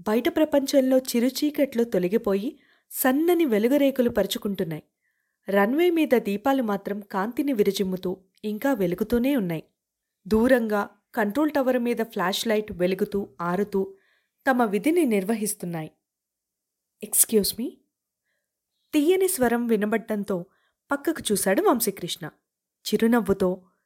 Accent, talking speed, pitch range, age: native, 90 wpm, 200-275 Hz, 20-39